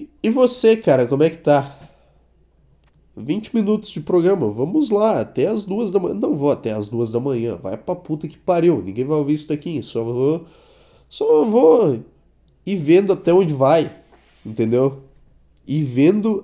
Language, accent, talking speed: Portuguese, Brazilian, 170 wpm